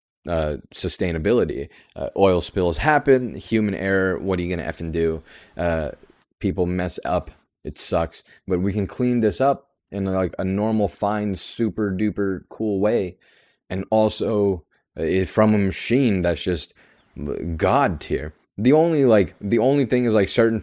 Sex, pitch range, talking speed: male, 85-105 Hz, 155 wpm